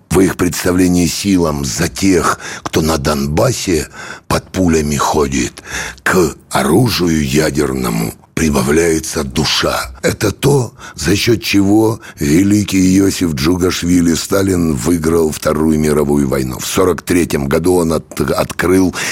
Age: 60-79